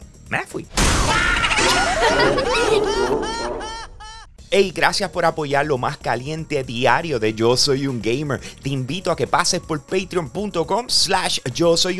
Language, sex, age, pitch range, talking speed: Spanish, male, 30-49, 110-170 Hz, 120 wpm